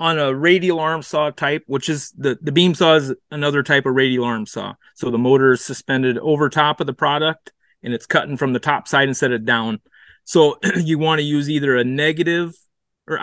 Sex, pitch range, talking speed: male, 130-160 Hz, 220 wpm